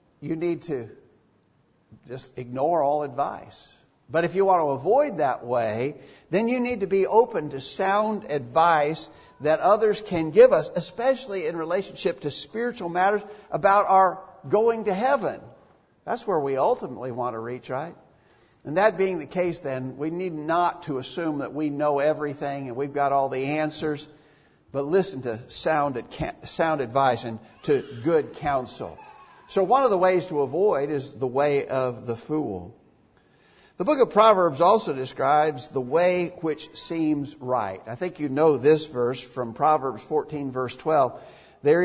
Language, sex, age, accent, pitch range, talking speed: English, male, 50-69, American, 130-180 Hz, 165 wpm